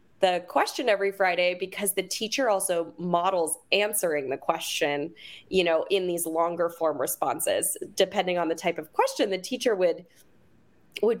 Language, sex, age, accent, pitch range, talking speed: English, female, 20-39, American, 165-210 Hz, 155 wpm